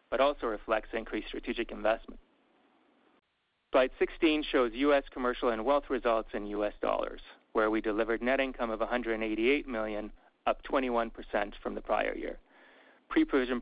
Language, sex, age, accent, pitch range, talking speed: English, male, 40-59, American, 110-135 Hz, 140 wpm